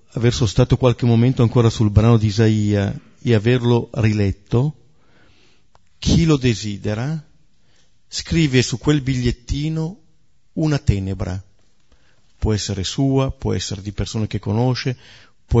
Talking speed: 120 wpm